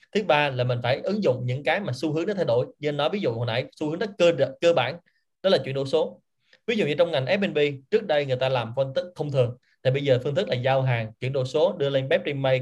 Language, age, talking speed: Vietnamese, 20-39, 300 wpm